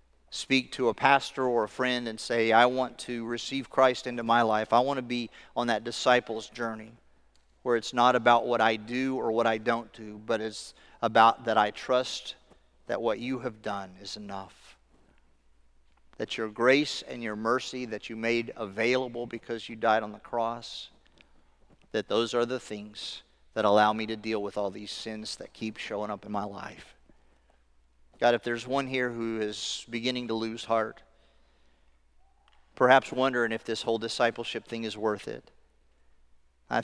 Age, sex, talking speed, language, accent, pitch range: 40-59, male, 180 wpm, English, American, 95-120 Hz